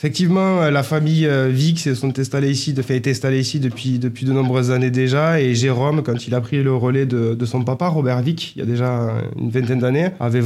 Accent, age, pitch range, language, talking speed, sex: French, 20-39, 115-130 Hz, French, 200 wpm, male